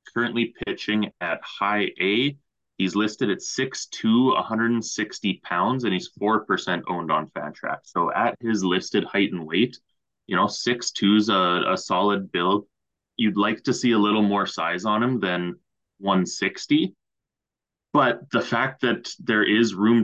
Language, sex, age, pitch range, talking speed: English, male, 20-39, 90-110 Hz, 155 wpm